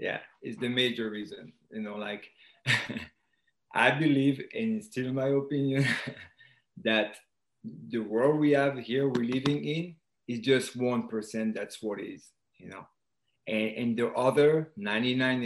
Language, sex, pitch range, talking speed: English, male, 115-135 Hz, 150 wpm